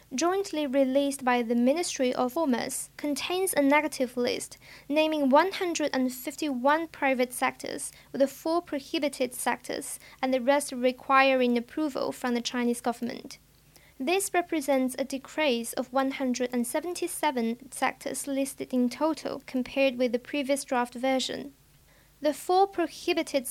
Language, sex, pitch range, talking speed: English, female, 255-295 Hz, 125 wpm